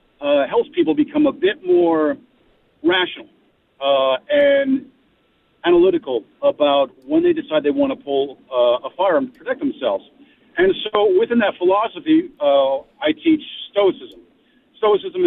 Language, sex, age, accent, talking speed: English, male, 50-69, American, 140 wpm